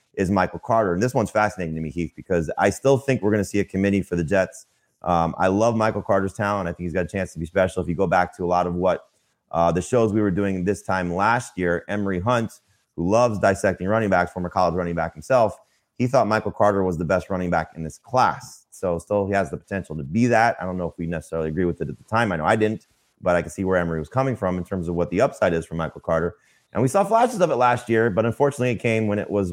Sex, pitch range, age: male, 85-110 Hz, 30-49